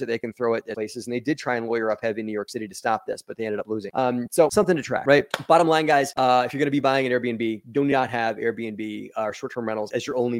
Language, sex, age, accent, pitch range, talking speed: English, male, 30-49, American, 115-140 Hz, 330 wpm